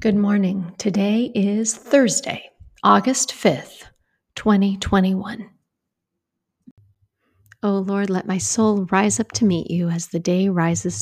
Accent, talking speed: American, 125 wpm